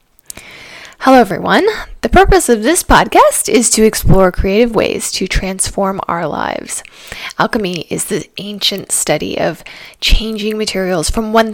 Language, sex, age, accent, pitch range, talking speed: English, female, 20-39, American, 195-245 Hz, 135 wpm